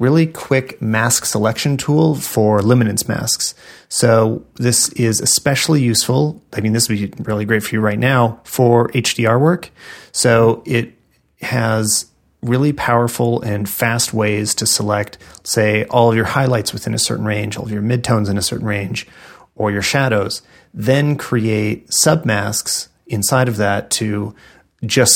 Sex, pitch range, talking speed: male, 105-125 Hz, 155 wpm